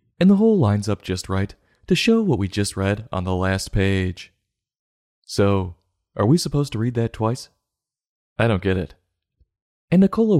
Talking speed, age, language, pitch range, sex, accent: 180 wpm, 30-49, English, 95-125 Hz, male, American